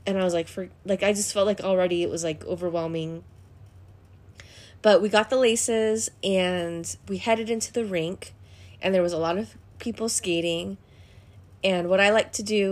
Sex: female